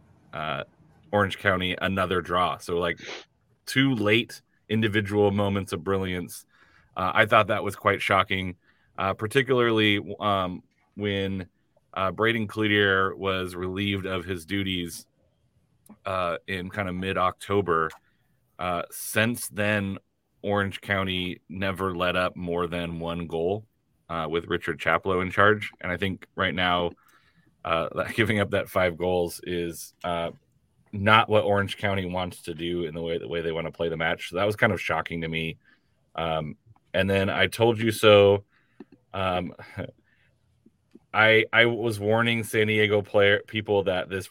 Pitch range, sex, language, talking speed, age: 90-100 Hz, male, English, 155 wpm, 30-49